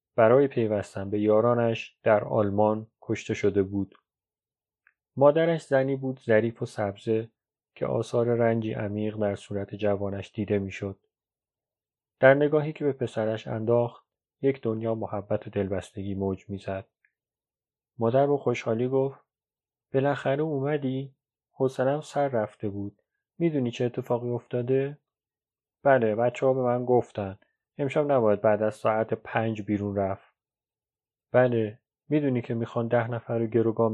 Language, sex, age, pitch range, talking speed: Persian, male, 30-49, 105-130 Hz, 130 wpm